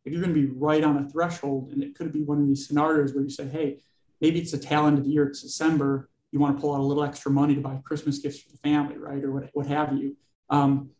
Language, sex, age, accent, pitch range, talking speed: English, male, 30-49, American, 140-150 Hz, 280 wpm